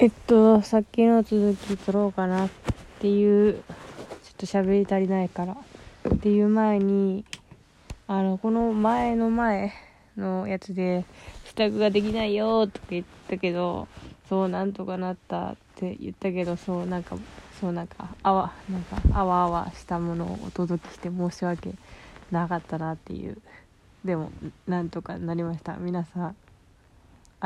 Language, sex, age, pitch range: Japanese, female, 20-39, 175-205 Hz